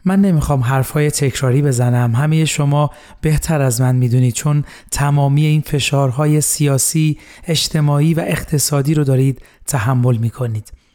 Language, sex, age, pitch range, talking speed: Persian, male, 30-49, 130-150 Hz, 125 wpm